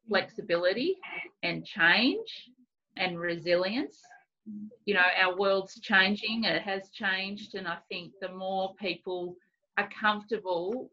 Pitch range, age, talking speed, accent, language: 170-210 Hz, 30-49, 115 wpm, Australian, English